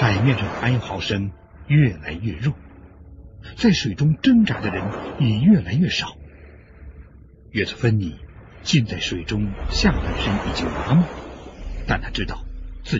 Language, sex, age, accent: Chinese, male, 60-79, native